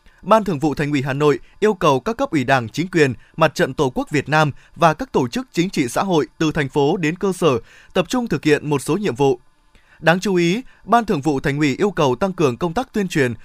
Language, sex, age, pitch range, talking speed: Vietnamese, male, 20-39, 150-205 Hz, 265 wpm